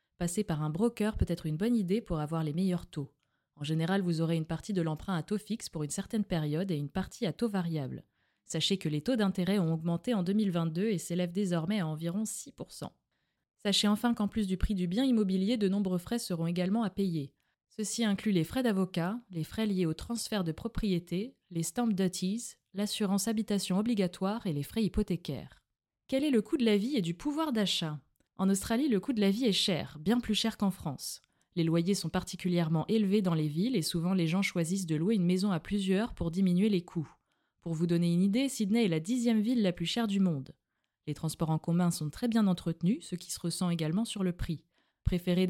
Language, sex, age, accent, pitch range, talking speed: French, female, 20-39, French, 165-210 Hz, 220 wpm